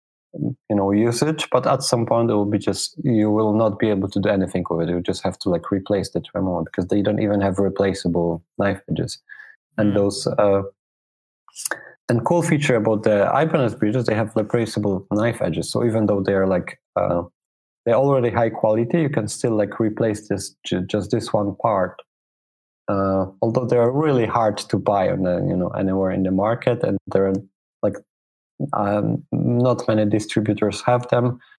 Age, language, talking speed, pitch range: 20-39, English, 185 wpm, 100-120 Hz